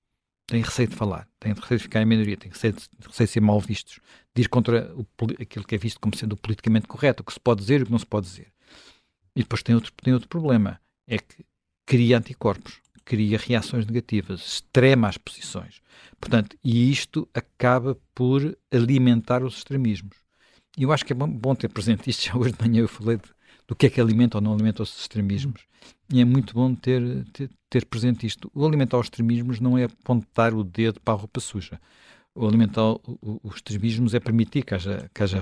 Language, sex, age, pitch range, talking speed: Portuguese, male, 50-69, 110-135 Hz, 210 wpm